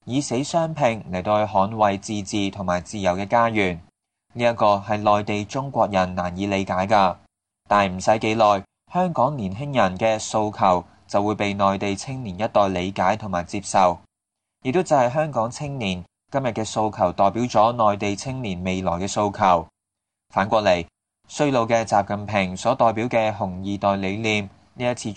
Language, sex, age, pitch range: English, male, 20-39, 95-115 Hz